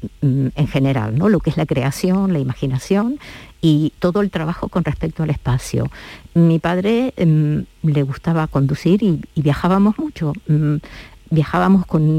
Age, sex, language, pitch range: 50-69, female, Spanish, 145-180 Hz